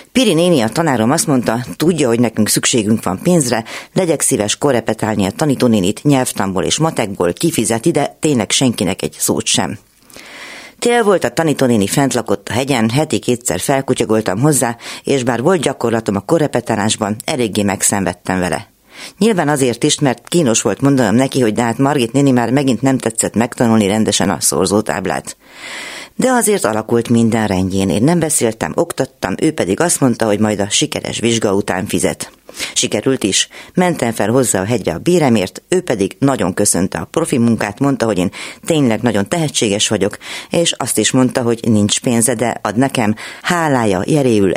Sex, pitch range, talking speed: female, 105-145 Hz, 165 wpm